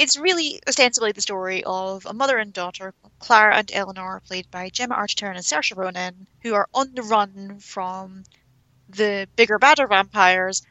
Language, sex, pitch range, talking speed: English, female, 185-220 Hz, 170 wpm